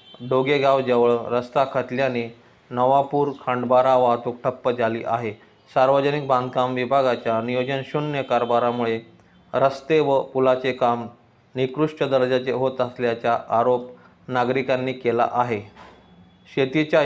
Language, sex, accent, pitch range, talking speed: Marathi, male, native, 120-135 Hz, 100 wpm